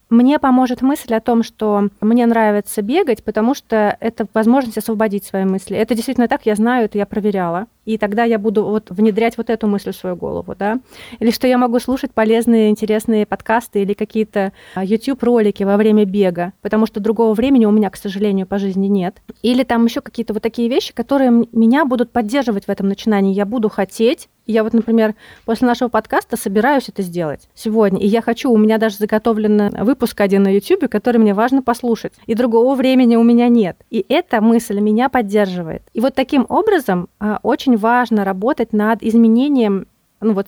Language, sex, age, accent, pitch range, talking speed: Russian, female, 30-49, native, 210-250 Hz, 180 wpm